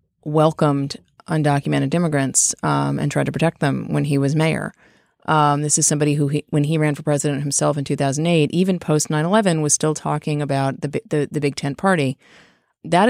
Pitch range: 140-165 Hz